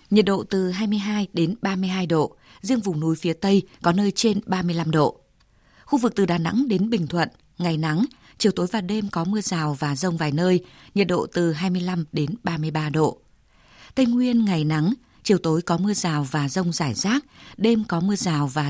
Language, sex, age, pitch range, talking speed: Vietnamese, female, 20-39, 165-205 Hz, 200 wpm